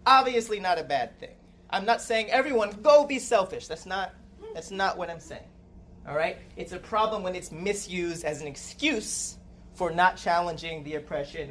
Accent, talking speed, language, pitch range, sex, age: American, 175 wpm, English, 150-200 Hz, male, 30-49